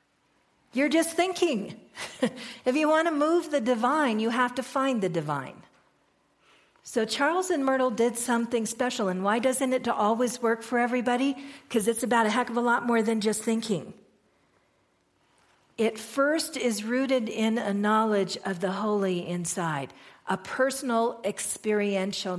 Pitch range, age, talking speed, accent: 180-235 Hz, 50-69, 155 wpm, American